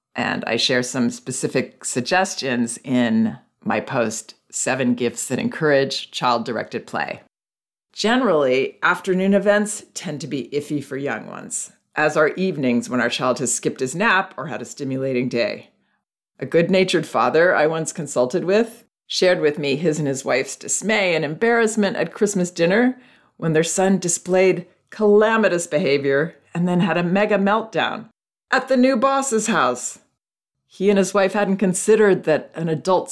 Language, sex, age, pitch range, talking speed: English, female, 40-59, 130-190 Hz, 155 wpm